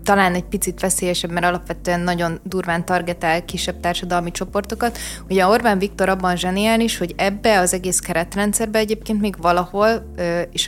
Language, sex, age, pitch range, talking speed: Hungarian, female, 20-39, 170-195 Hz, 150 wpm